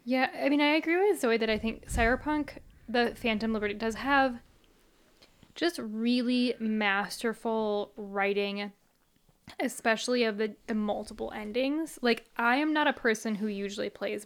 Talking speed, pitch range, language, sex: 145 wpm, 200-245 Hz, English, female